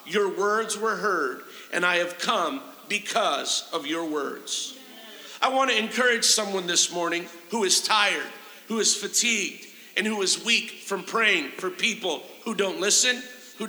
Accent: American